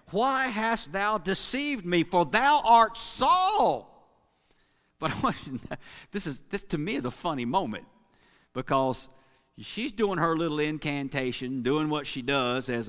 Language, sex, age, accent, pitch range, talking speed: English, male, 50-69, American, 125-180 Hz, 140 wpm